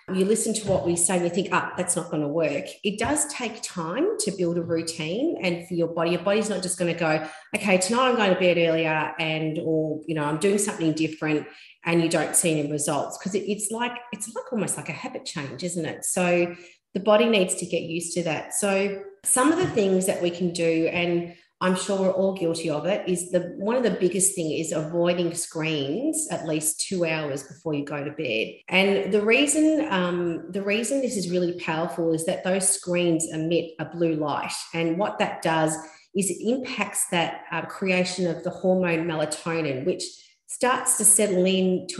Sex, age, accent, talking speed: female, 40-59, Australian, 215 wpm